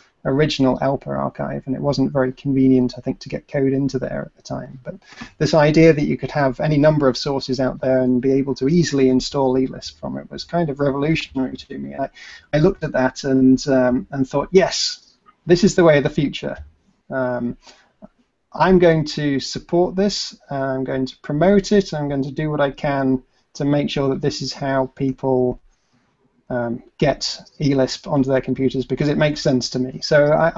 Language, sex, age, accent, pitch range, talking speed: English, male, 30-49, British, 130-155 Hz, 200 wpm